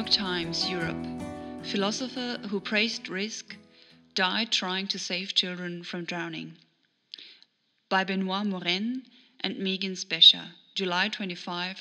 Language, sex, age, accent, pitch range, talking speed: English, female, 30-49, German, 180-220 Hz, 105 wpm